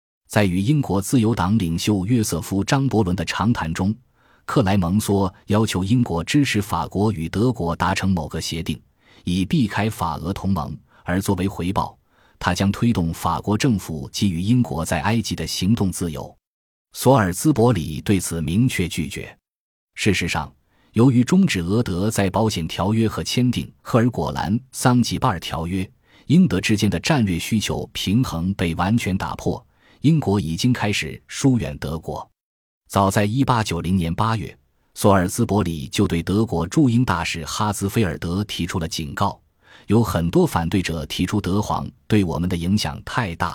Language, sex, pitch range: Chinese, male, 85-110 Hz